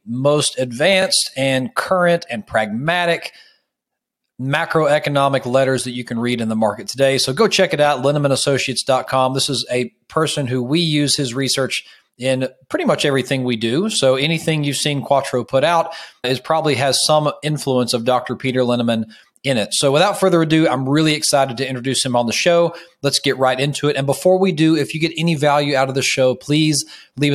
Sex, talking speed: male, 195 wpm